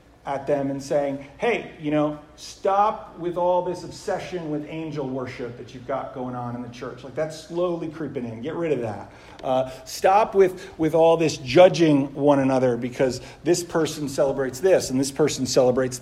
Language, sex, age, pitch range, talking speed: English, male, 40-59, 130-185 Hz, 185 wpm